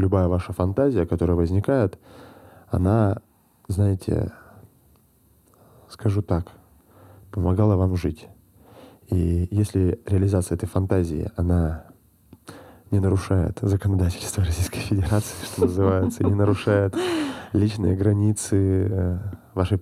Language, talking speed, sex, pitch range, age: Russian, 95 wpm, male, 90-105 Hz, 20-39